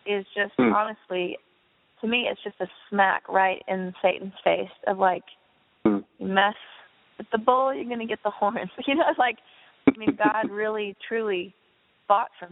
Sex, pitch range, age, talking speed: female, 190-225 Hz, 20-39, 175 wpm